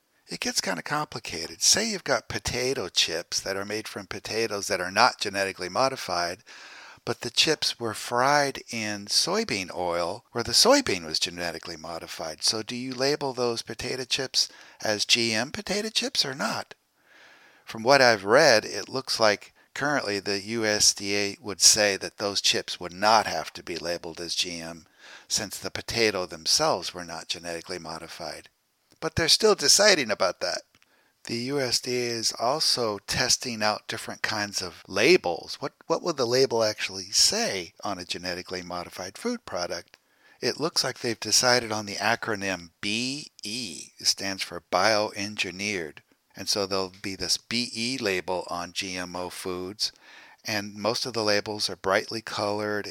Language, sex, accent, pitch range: English, male, American, 90-115 Hz